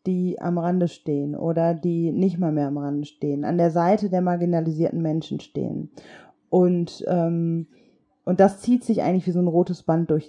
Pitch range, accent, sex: 175-215 Hz, German, female